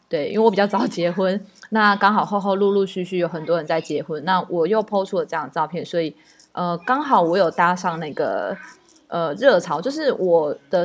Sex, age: female, 20-39